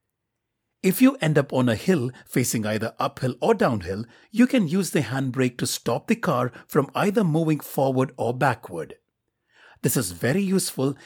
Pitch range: 120-185 Hz